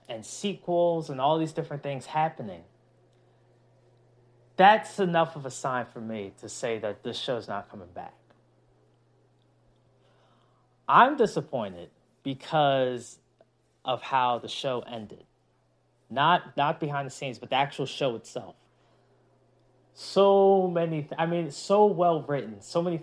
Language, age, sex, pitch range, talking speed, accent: English, 20-39, male, 120-165 Hz, 130 wpm, American